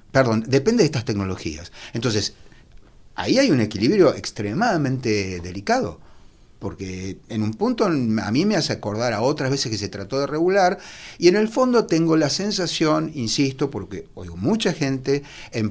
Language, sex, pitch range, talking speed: Spanish, male, 110-160 Hz, 160 wpm